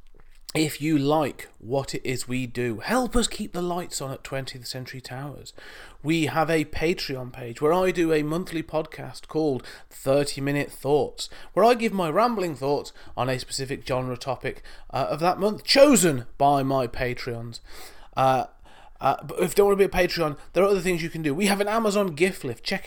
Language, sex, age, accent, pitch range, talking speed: English, male, 30-49, British, 130-175 Hz, 200 wpm